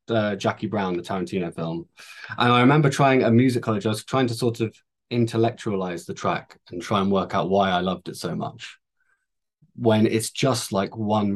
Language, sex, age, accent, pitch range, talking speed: English, male, 20-39, British, 95-120 Hz, 200 wpm